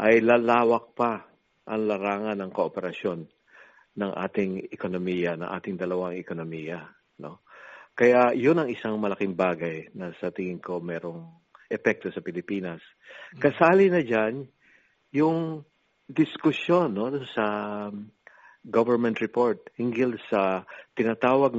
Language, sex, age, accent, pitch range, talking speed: Filipino, male, 50-69, native, 105-140 Hz, 115 wpm